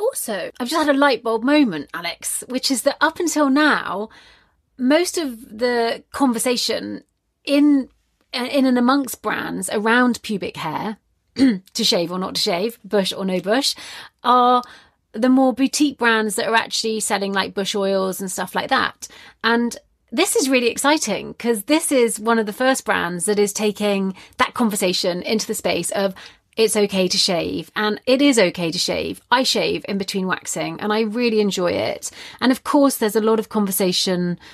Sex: female